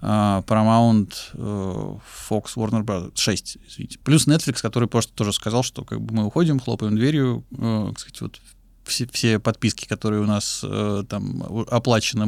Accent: native